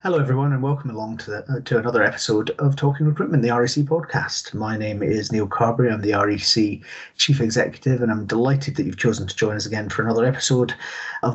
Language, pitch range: English, 110-130 Hz